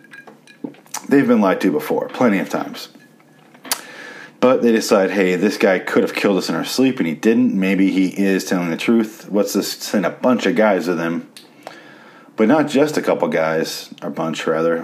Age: 30-49